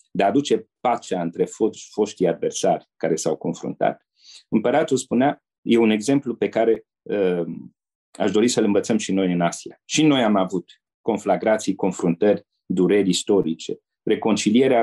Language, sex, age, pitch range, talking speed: Romanian, male, 40-59, 95-145 Hz, 150 wpm